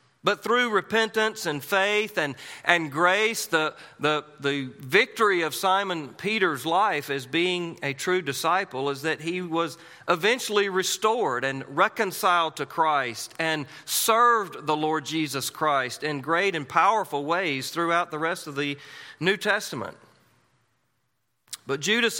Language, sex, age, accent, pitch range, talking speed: English, male, 40-59, American, 145-195 Hz, 140 wpm